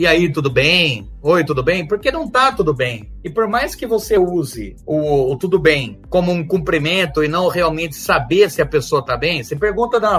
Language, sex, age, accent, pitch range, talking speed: Portuguese, male, 30-49, Brazilian, 155-230 Hz, 220 wpm